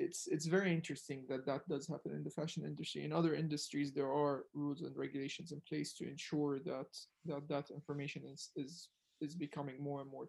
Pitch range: 140-155 Hz